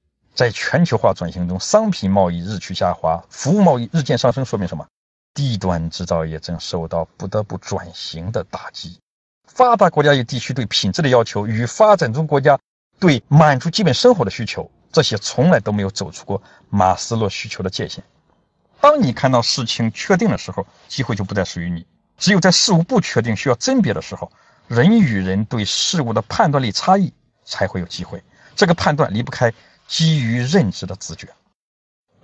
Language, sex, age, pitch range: Chinese, male, 50-69, 95-140 Hz